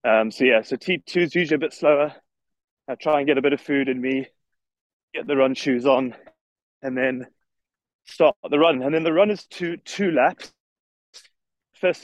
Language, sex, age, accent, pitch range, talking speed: English, male, 20-39, British, 120-150 Hz, 195 wpm